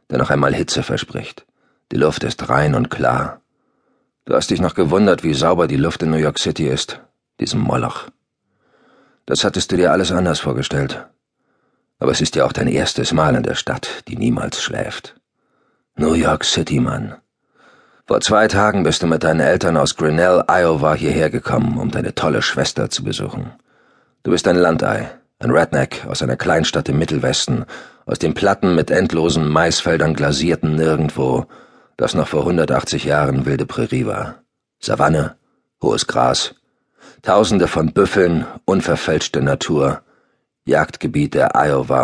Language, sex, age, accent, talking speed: German, male, 40-59, German, 155 wpm